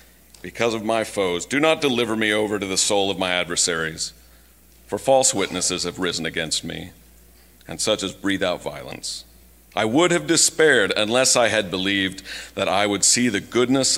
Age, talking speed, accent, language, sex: 50-69, 180 wpm, American, English, male